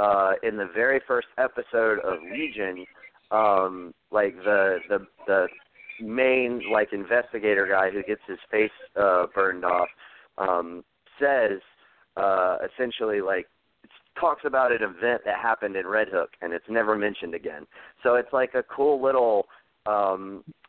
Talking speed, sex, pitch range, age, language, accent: 150 wpm, male, 90-120 Hz, 40-59, English, American